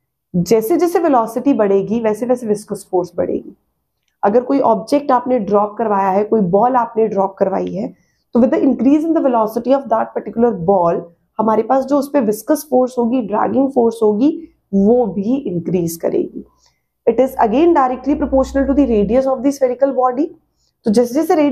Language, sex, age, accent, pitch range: Hindi, female, 30-49, native, 215-275 Hz